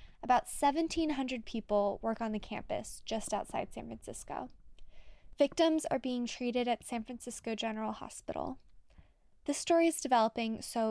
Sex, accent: female, American